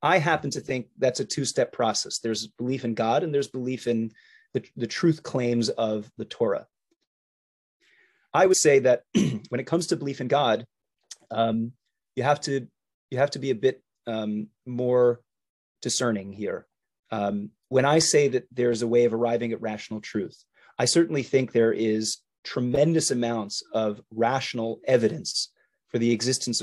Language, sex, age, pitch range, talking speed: English, male, 30-49, 110-140 Hz, 165 wpm